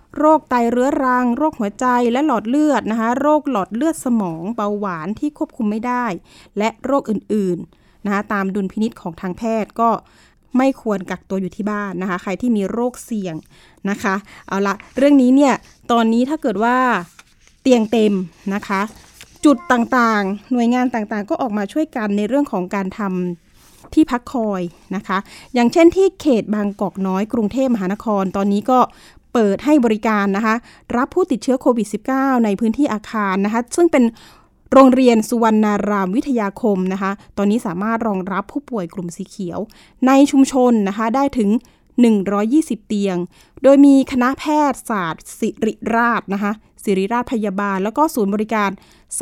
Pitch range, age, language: 200-255 Hz, 20-39, Thai